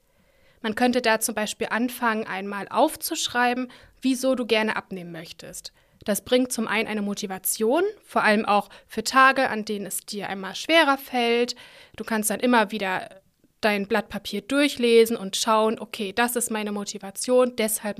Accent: German